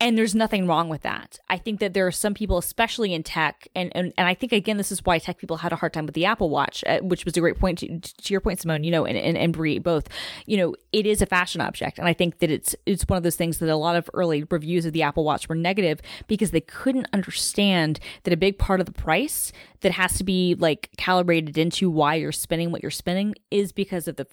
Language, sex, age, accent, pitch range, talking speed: English, female, 20-39, American, 165-205 Hz, 270 wpm